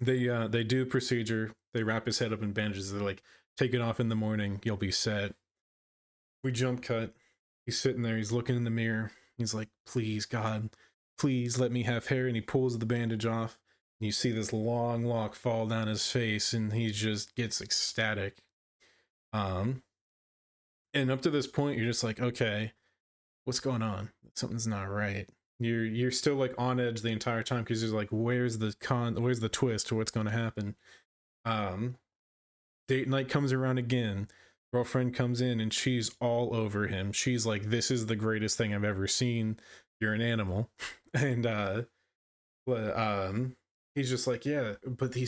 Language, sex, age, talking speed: English, male, 20-39, 185 wpm